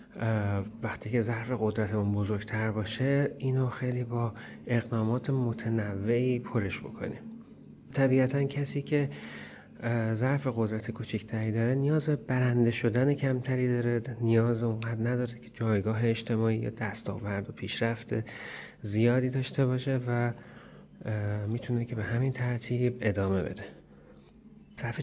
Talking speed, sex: 115 wpm, male